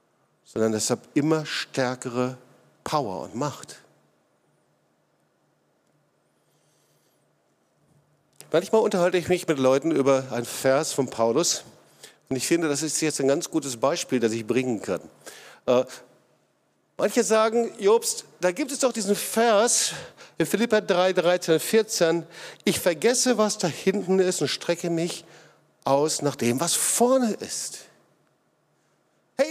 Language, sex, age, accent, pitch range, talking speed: German, male, 50-69, German, 145-200 Hz, 125 wpm